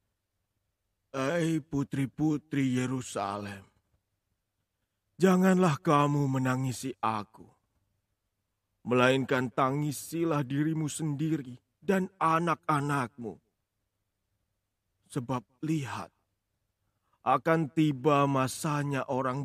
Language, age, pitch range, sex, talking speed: Indonesian, 30-49, 105-155 Hz, male, 60 wpm